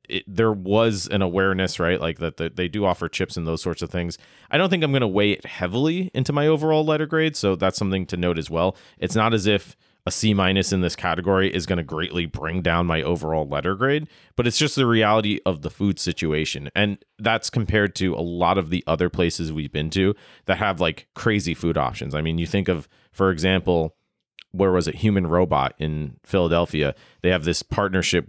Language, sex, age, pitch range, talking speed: English, male, 30-49, 80-100 Hz, 220 wpm